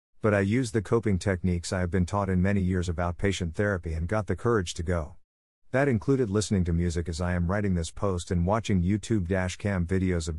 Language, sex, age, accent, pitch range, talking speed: English, male, 50-69, American, 85-115 Hz, 225 wpm